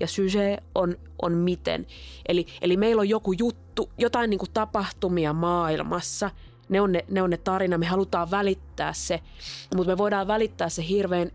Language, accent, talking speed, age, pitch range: Finnish, native, 160 wpm, 20-39, 165-200 Hz